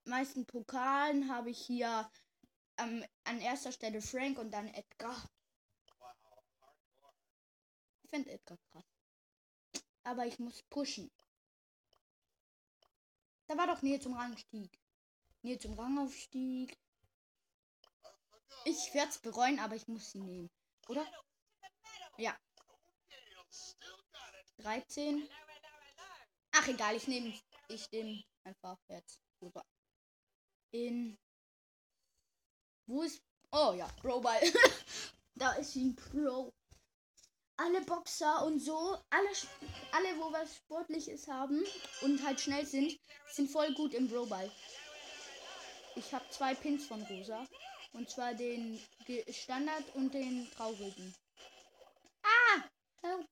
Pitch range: 235-310 Hz